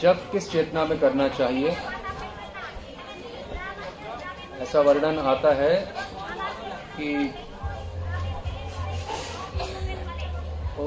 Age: 30-49